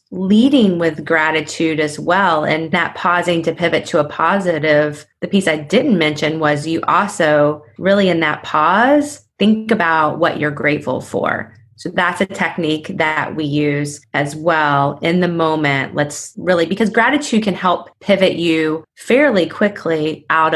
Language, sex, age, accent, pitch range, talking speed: English, female, 20-39, American, 150-180 Hz, 160 wpm